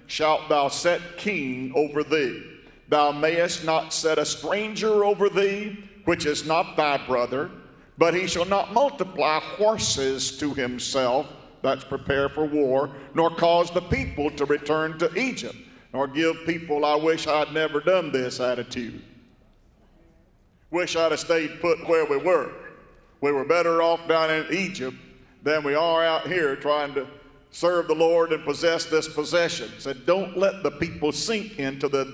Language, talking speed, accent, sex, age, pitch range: English, 165 wpm, American, male, 50-69, 145-175 Hz